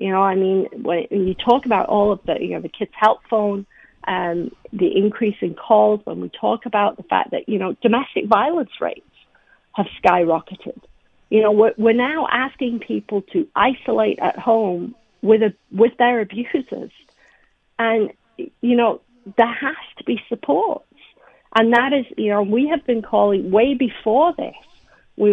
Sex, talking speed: female, 170 wpm